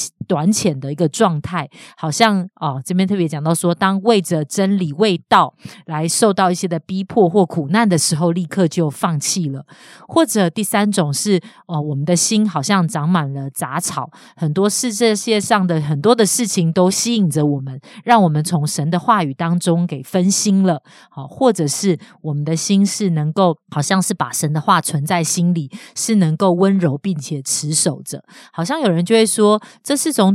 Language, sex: Chinese, female